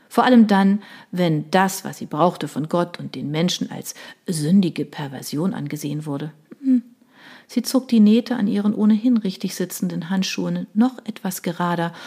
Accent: German